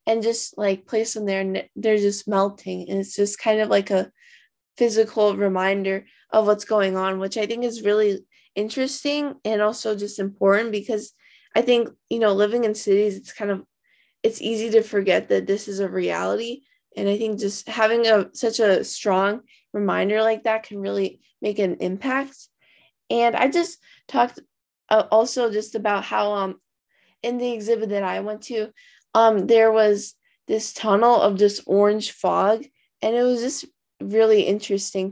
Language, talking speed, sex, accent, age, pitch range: English, 175 wpm, female, American, 20-39, 200-240 Hz